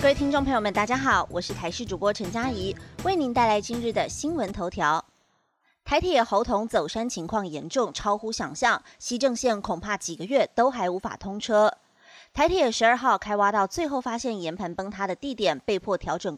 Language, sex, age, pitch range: Chinese, female, 30-49, 195-255 Hz